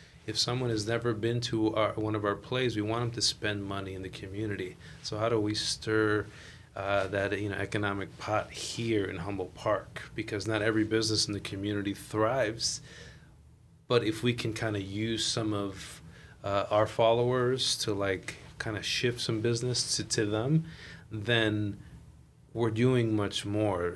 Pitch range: 100-115 Hz